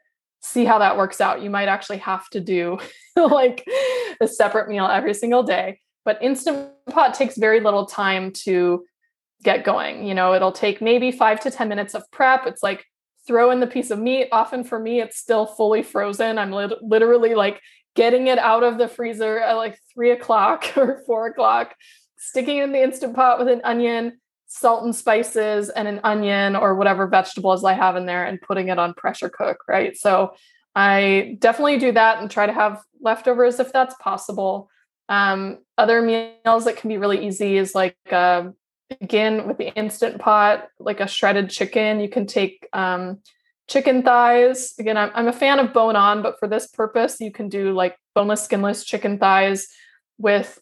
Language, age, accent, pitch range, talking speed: English, 20-39, American, 200-240 Hz, 190 wpm